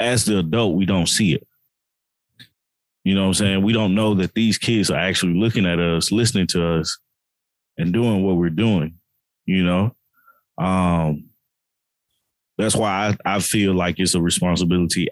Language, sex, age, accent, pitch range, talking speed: English, male, 20-39, American, 85-105 Hz, 170 wpm